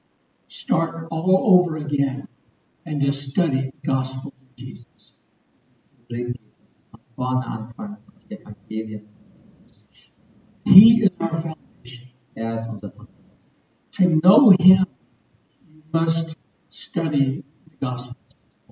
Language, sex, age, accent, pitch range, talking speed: German, male, 60-79, American, 115-165 Hz, 75 wpm